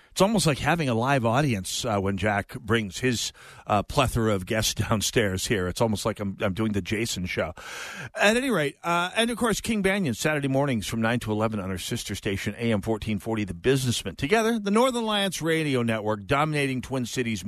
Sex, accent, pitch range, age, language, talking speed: male, American, 105-145 Hz, 50-69, English, 205 wpm